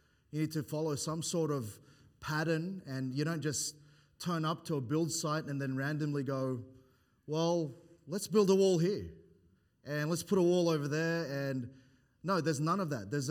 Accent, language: Australian, English